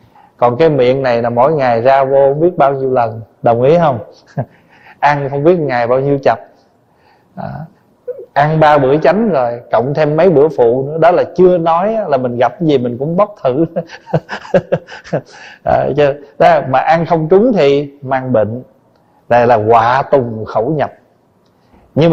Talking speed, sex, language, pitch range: 170 wpm, male, Vietnamese, 125-175 Hz